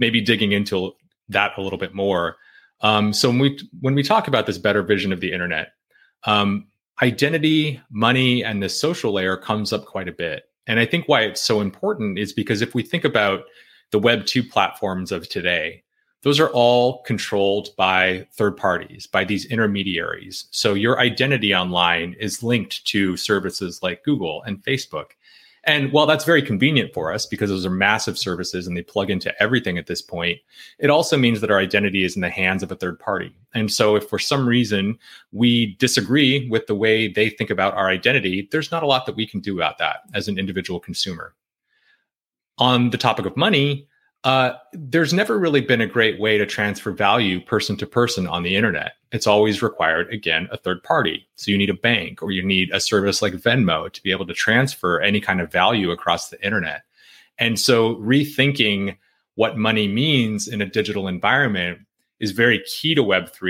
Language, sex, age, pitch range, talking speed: English, male, 30-49, 100-125 Hz, 195 wpm